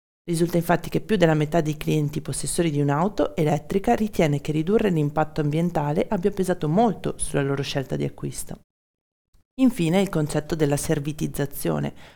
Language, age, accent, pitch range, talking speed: Italian, 40-59, native, 150-190 Hz, 150 wpm